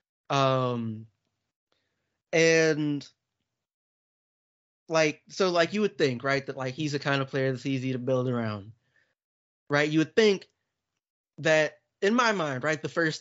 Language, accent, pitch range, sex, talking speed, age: English, American, 135-170 Hz, male, 145 wpm, 20-39